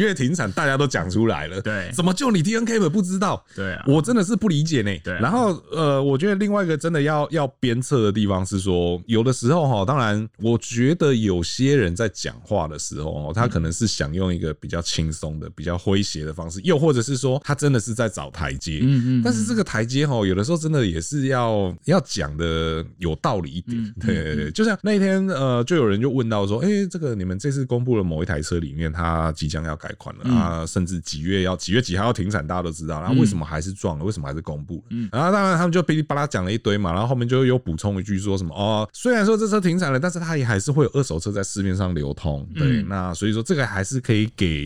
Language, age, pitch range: Chinese, 20-39, 95-150 Hz